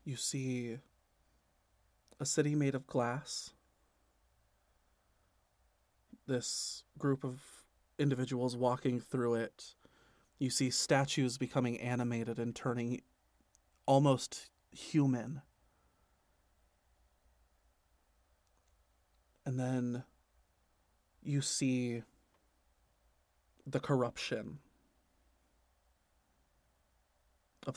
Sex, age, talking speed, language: male, 30-49, 65 wpm, English